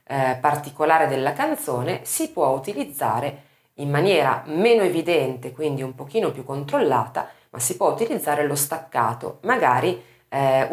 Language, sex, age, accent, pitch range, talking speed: Italian, female, 30-49, native, 125-180 Hz, 135 wpm